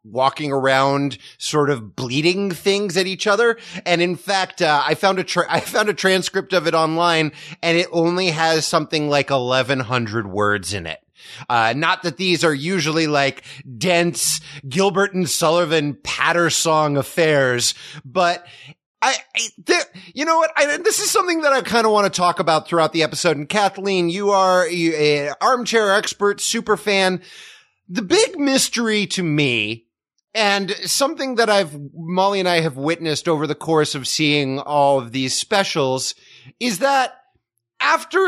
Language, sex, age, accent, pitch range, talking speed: English, male, 30-49, American, 145-195 Hz, 165 wpm